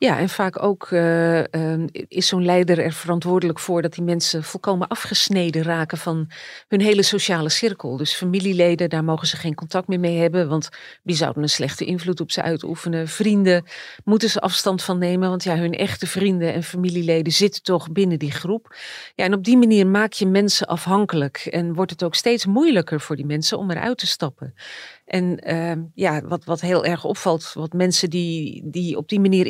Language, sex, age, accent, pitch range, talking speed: Dutch, female, 40-59, Dutch, 165-200 Hz, 195 wpm